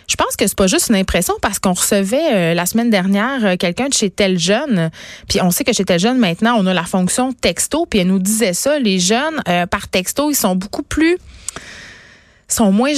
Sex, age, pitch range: female, 30-49, 180-225 Hz